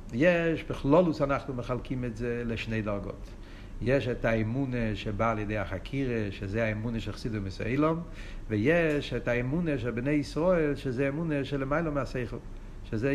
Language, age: Hebrew, 60-79